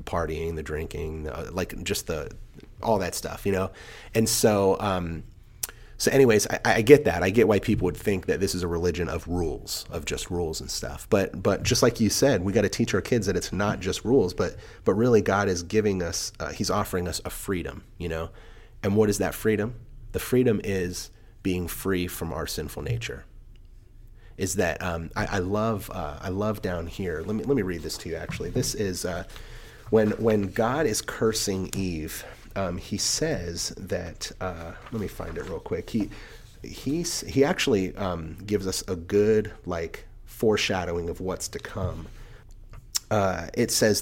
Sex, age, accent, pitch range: male, 30-49, American, 90-110 Hz